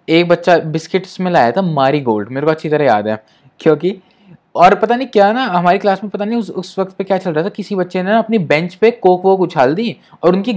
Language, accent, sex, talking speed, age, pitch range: Hindi, native, male, 260 wpm, 20-39, 140-185 Hz